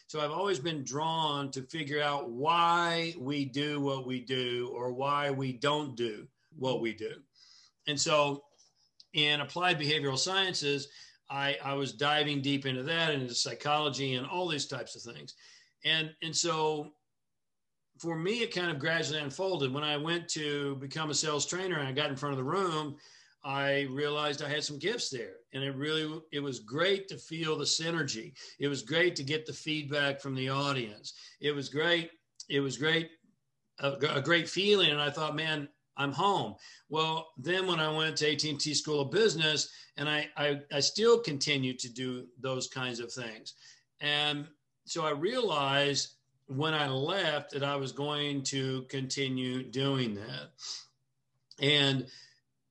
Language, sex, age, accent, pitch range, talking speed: English, male, 50-69, American, 135-155 Hz, 175 wpm